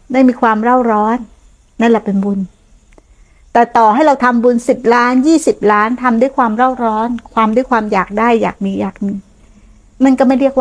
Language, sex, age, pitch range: Thai, female, 60-79, 175-250 Hz